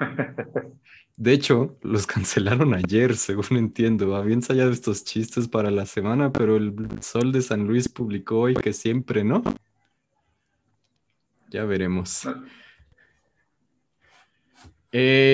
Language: Spanish